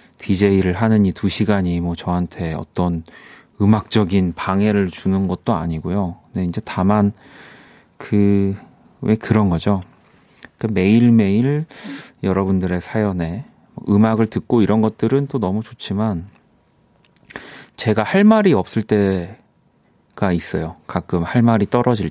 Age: 30-49